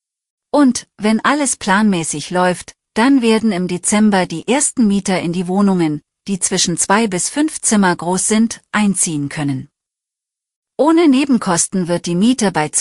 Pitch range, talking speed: 180-235 Hz, 145 wpm